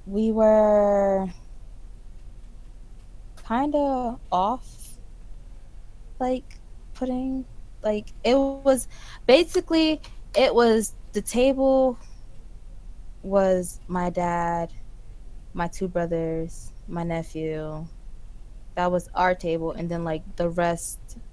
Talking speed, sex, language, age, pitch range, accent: 90 wpm, female, English, 20-39, 160-215 Hz, American